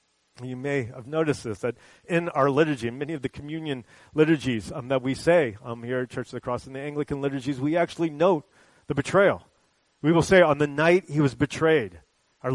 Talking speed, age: 215 wpm, 40-59